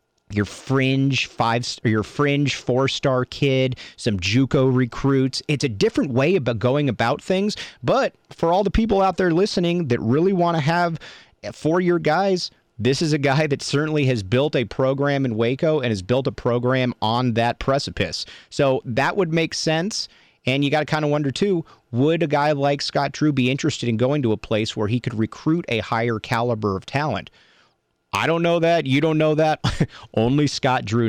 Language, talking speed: English, 195 wpm